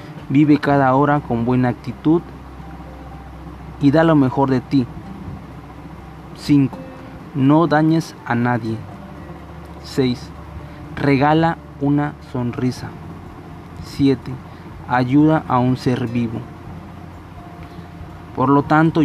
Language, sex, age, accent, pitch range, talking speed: Spanish, male, 30-49, Mexican, 125-155 Hz, 95 wpm